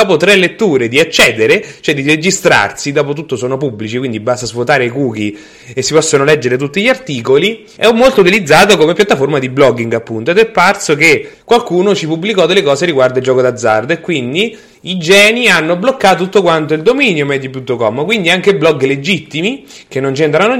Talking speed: 185 wpm